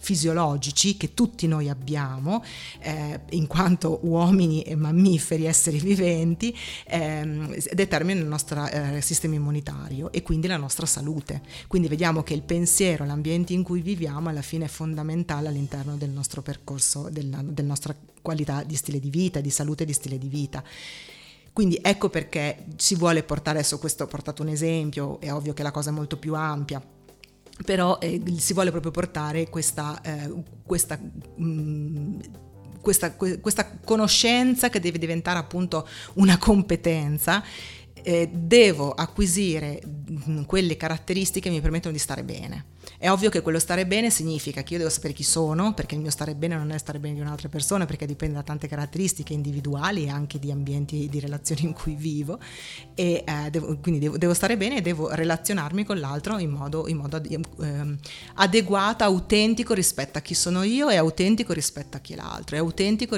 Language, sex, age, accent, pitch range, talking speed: Italian, female, 40-59, native, 150-180 Hz, 170 wpm